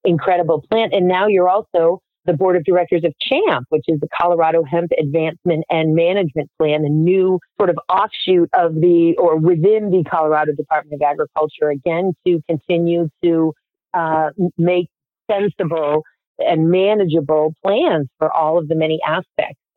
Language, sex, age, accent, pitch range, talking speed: English, female, 40-59, American, 160-190 Hz, 155 wpm